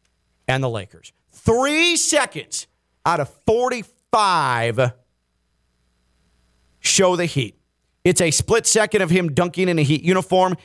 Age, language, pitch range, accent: 40-59, English, 125-170 Hz, American